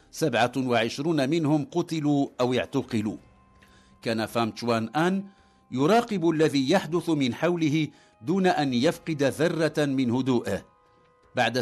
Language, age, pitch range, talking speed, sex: English, 60-79, 120-165 Hz, 110 wpm, male